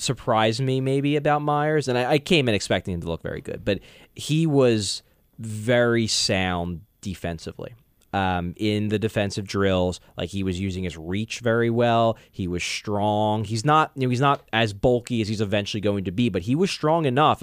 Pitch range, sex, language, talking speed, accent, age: 95-130 Hz, male, English, 195 wpm, American, 20-39